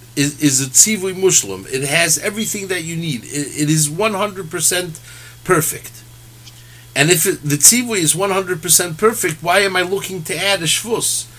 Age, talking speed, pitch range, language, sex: 50-69, 170 wpm, 120-180 Hz, English, male